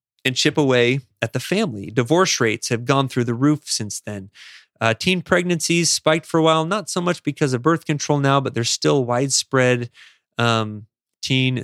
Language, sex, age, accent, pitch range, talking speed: English, male, 30-49, American, 115-145 Hz, 185 wpm